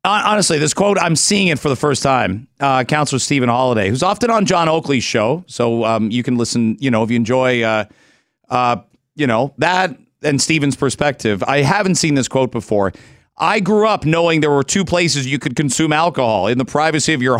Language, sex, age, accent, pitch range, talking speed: English, male, 40-59, American, 115-155 Hz, 210 wpm